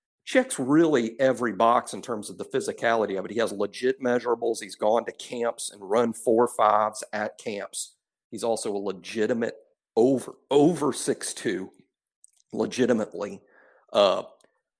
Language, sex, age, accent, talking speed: English, male, 50-69, American, 140 wpm